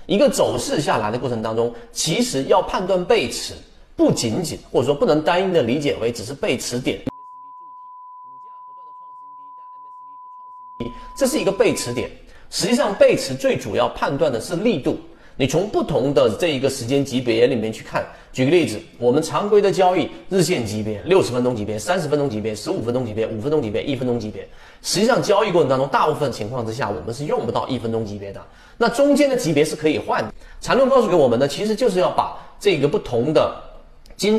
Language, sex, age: Chinese, male, 30-49